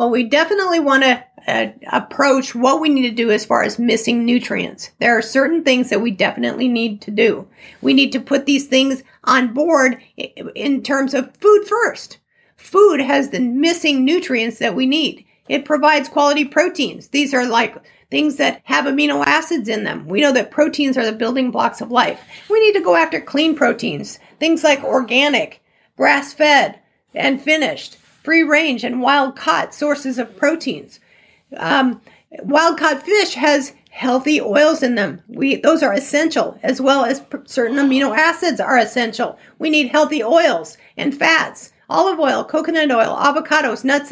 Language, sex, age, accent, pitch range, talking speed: English, female, 50-69, American, 250-310 Hz, 165 wpm